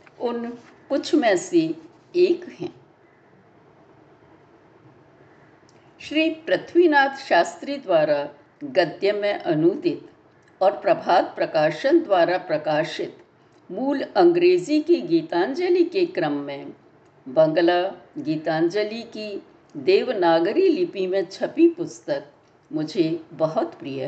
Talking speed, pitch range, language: 90 wpm, 230-345 Hz, Hindi